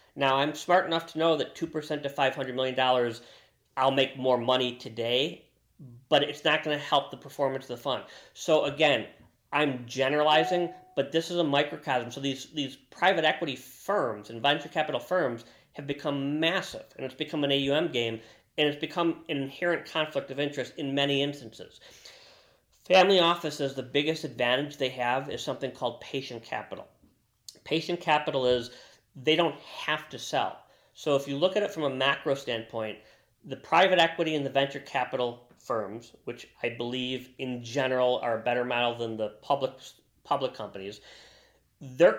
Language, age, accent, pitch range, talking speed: English, 40-59, American, 125-155 Hz, 170 wpm